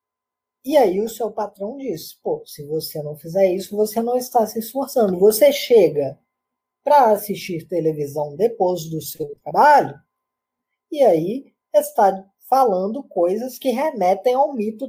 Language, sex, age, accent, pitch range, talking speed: Portuguese, female, 20-39, Brazilian, 160-265 Hz, 140 wpm